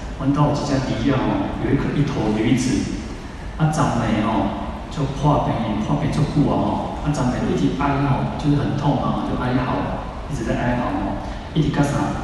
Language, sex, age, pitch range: Chinese, male, 30-49, 110-140 Hz